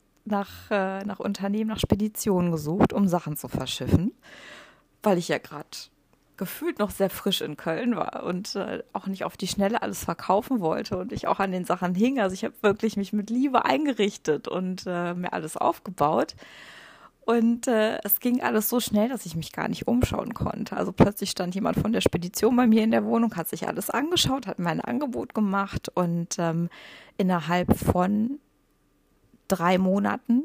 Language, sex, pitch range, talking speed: German, female, 170-220 Hz, 180 wpm